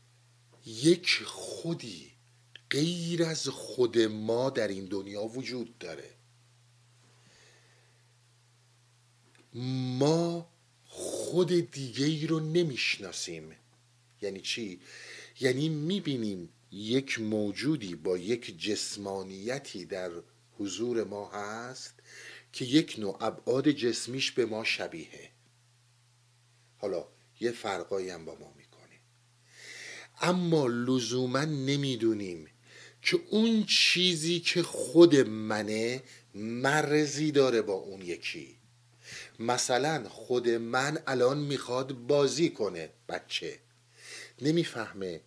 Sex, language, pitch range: male, Persian, 120-140 Hz